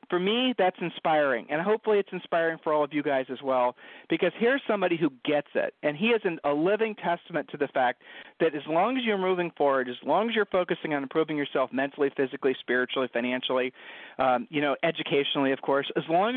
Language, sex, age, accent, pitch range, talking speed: English, male, 50-69, American, 150-200 Hz, 210 wpm